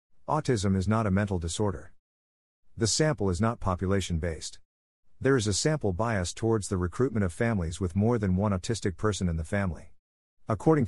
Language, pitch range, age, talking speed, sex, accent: English, 90-110 Hz, 50-69, 170 wpm, male, American